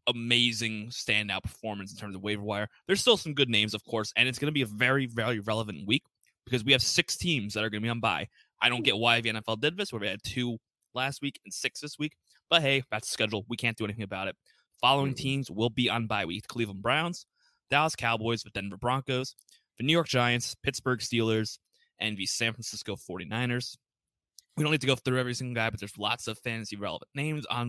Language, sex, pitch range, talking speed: English, male, 105-130 Hz, 235 wpm